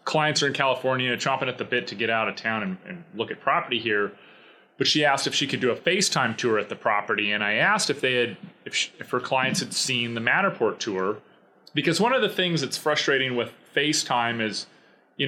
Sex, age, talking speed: male, 30-49, 230 wpm